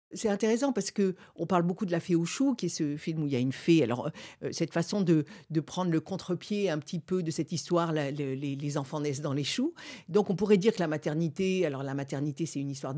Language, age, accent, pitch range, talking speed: French, 50-69, French, 145-190 Hz, 265 wpm